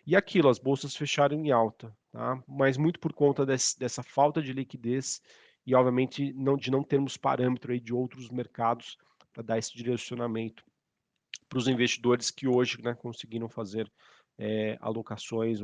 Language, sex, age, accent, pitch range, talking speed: Portuguese, male, 40-59, Brazilian, 115-135 Hz, 160 wpm